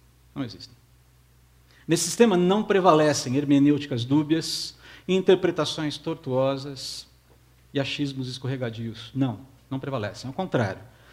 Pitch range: 105-150 Hz